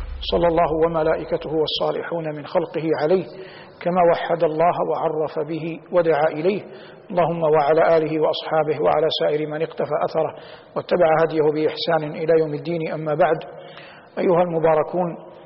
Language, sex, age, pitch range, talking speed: Arabic, male, 50-69, 160-175 Hz, 130 wpm